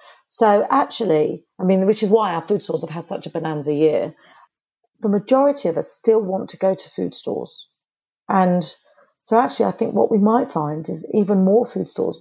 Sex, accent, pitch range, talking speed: female, British, 170-205 Hz, 200 wpm